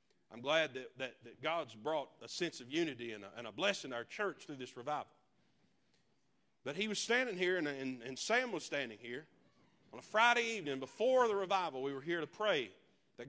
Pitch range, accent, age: 170-235 Hz, American, 40-59